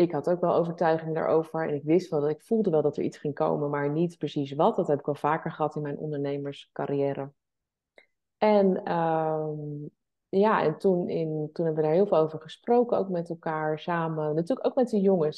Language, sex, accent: Dutch, female, Dutch